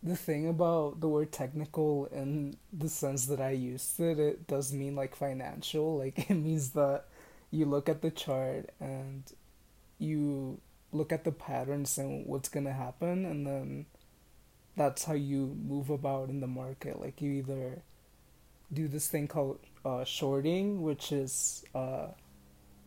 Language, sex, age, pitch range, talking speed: English, male, 20-39, 130-150 Hz, 155 wpm